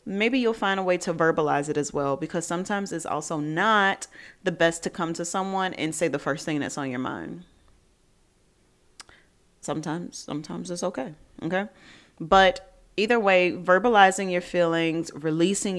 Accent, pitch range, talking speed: American, 150-200 Hz, 160 wpm